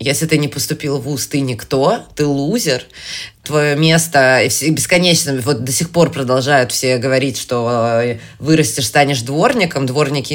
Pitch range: 125-160 Hz